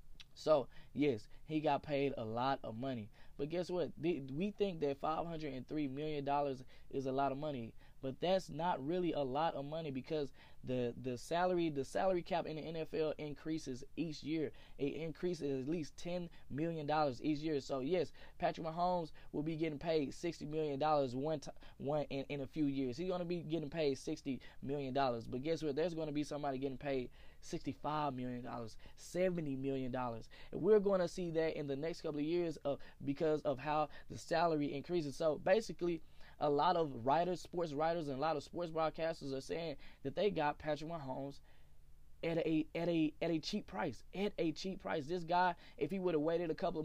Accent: American